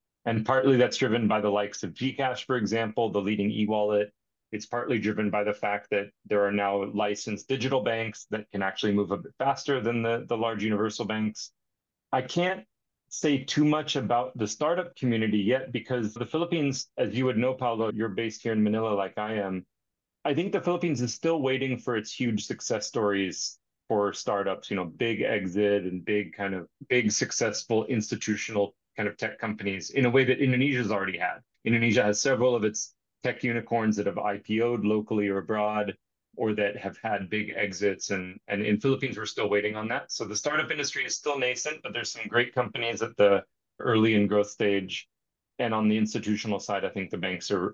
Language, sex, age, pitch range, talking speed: English, male, 30-49, 105-125 Hz, 200 wpm